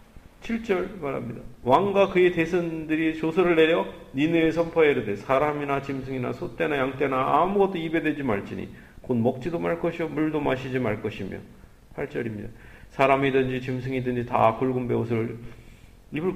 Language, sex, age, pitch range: Korean, male, 40-59, 115-160 Hz